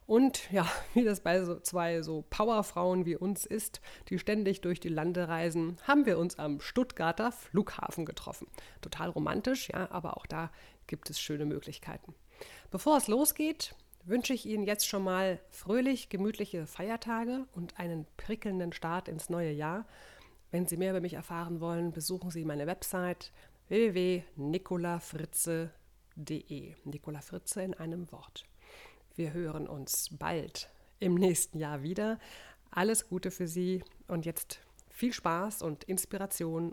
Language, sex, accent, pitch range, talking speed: German, female, German, 165-215 Hz, 145 wpm